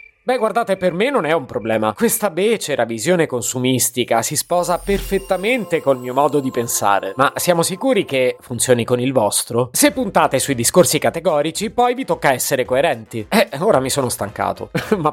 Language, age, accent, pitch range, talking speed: Italian, 30-49, native, 130-195 Hz, 175 wpm